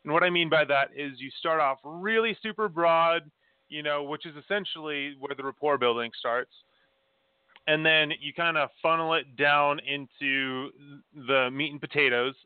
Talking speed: 175 wpm